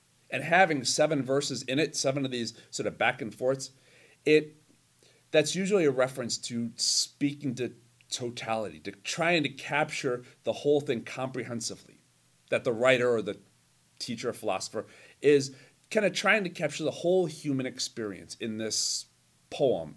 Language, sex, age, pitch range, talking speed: English, male, 40-59, 110-155 Hz, 155 wpm